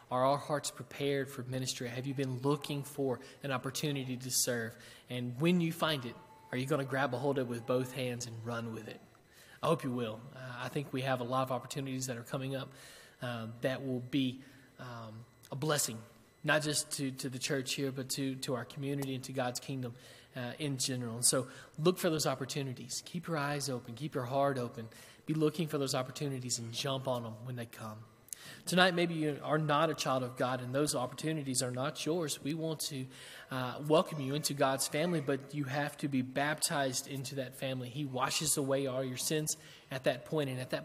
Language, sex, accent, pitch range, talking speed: English, male, American, 125-150 Hz, 220 wpm